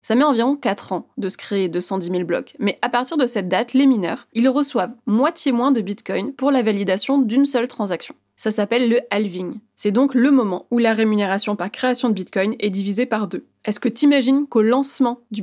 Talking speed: 220 wpm